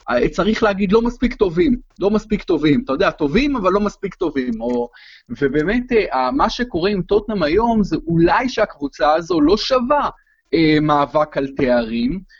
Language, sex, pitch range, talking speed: Hebrew, male, 145-210 Hz, 155 wpm